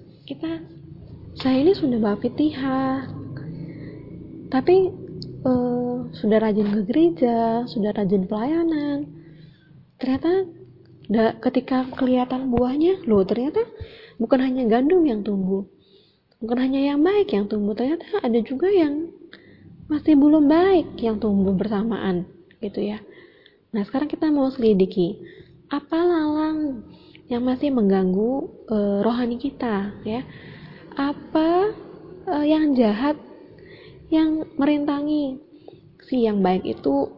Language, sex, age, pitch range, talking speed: Indonesian, female, 20-39, 205-290 Hz, 110 wpm